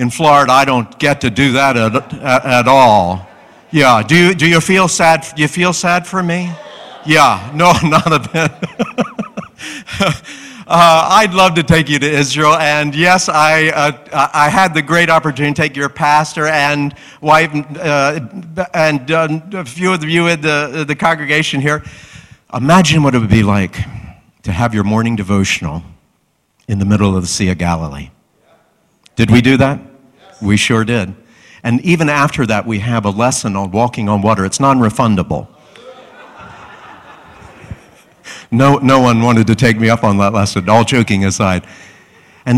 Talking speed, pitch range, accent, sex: 170 wpm, 105-150 Hz, American, male